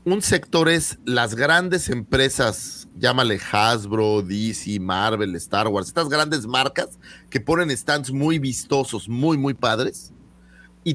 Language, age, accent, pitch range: Spanish, 40-59, Mexican, 115-165 Hz